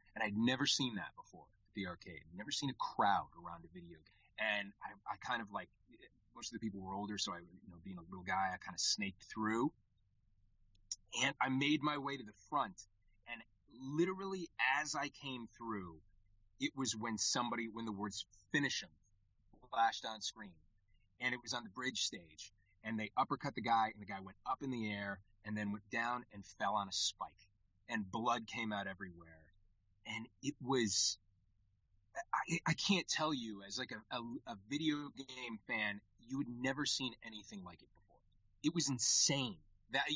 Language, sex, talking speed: English, male, 195 wpm